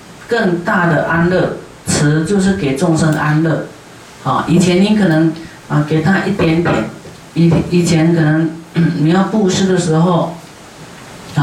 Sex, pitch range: female, 155-180 Hz